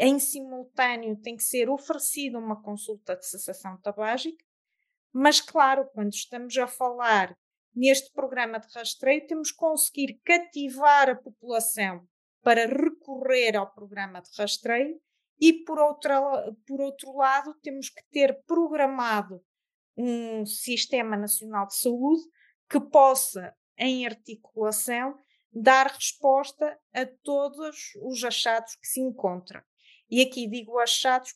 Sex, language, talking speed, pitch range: female, Portuguese, 120 wpm, 215-275 Hz